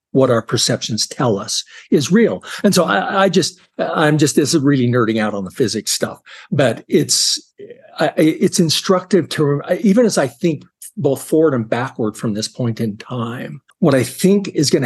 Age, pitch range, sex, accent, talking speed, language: 60-79, 115-165 Hz, male, American, 185 wpm, English